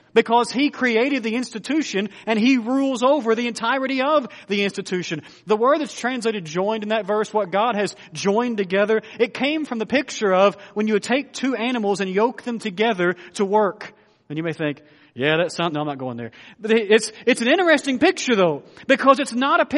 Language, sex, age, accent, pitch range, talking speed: English, male, 40-59, American, 175-255 Hz, 205 wpm